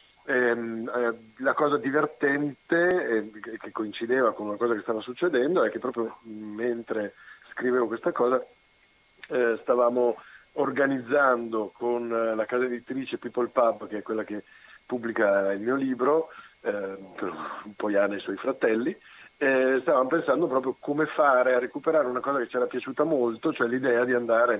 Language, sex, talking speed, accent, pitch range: Italian, male, 155 wpm, native, 110-130 Hz